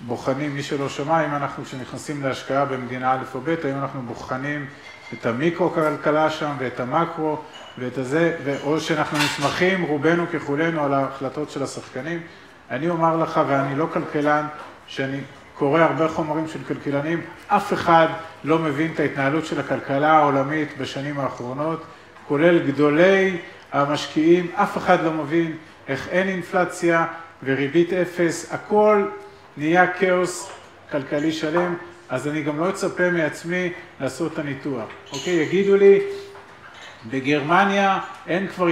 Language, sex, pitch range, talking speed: Hebrew, male, 140-170 Hz, 135 wpm